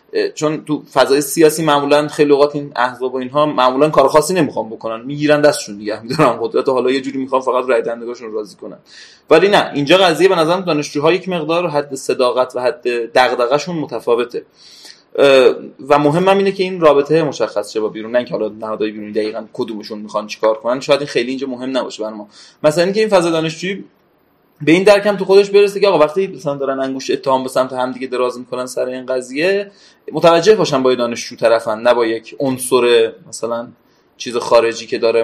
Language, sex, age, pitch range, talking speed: Persian, male, 30-49, 125-175 Hz, 190 wpm